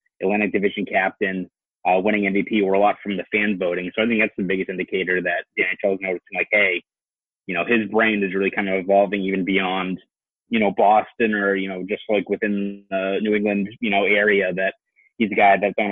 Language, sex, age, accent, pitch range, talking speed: English, male, 30-49, American, 95-110 Hz, 220 wpm